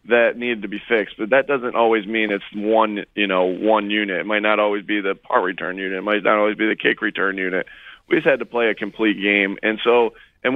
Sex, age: male, 20-39